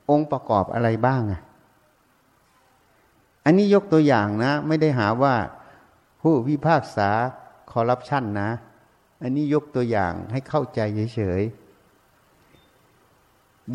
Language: Thai